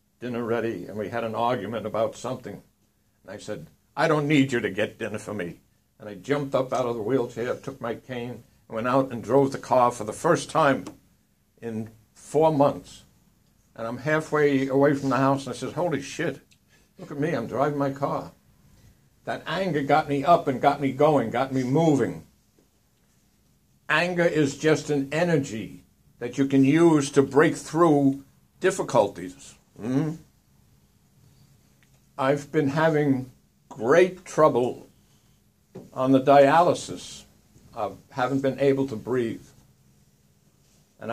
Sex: male